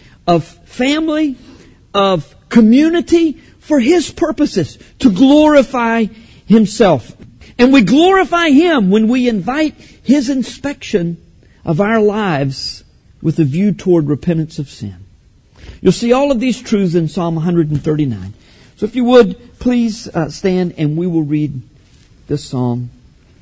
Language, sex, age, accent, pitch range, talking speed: English, male, 50-69, American, 150-250 Hz, 130 wpm